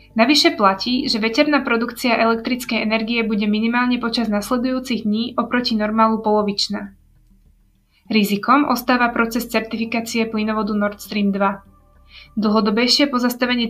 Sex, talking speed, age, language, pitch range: female, 110 wpm, 20-39, Slovak, 215-245 Hz